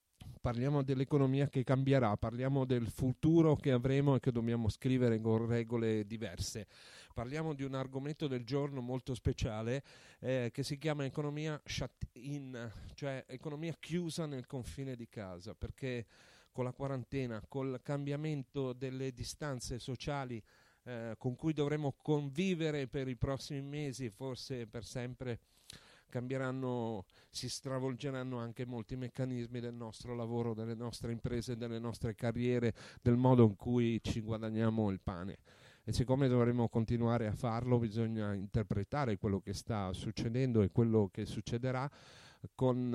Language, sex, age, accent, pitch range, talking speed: Italian, male, 40-59, native, 110-130 Hz, 140 wpm